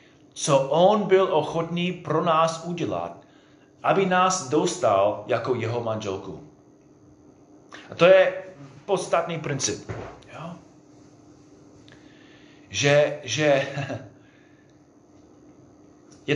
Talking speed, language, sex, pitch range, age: 80 wpm, Czech, male, 120-165 Hz, 30-49